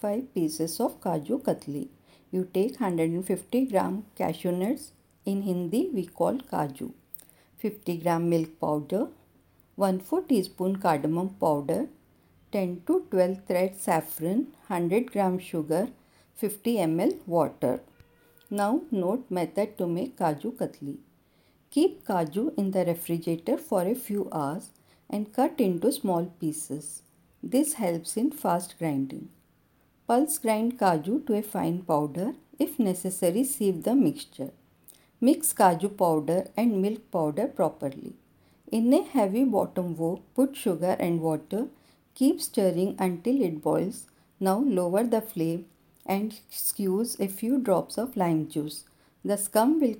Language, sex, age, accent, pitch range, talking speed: Hindi, female, 50-69, native, 170-235 Hz, 130 wpm